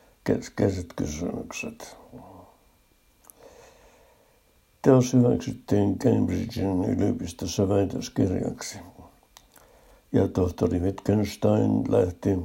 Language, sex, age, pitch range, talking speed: Finnish, male, 60-79, 95-110 Hz, 55 wpm